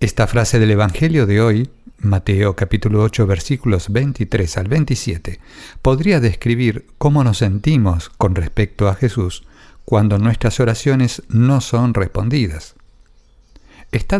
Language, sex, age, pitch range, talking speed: English, male, 50-69, 100-130 Hz, 125 wpm